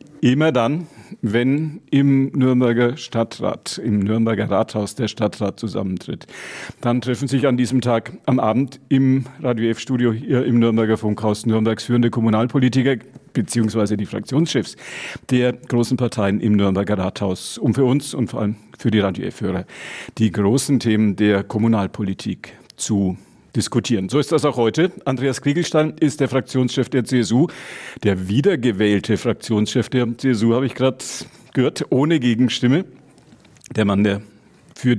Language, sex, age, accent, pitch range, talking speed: German, male, 50-69, German, 105-130 Hz, 145 wpm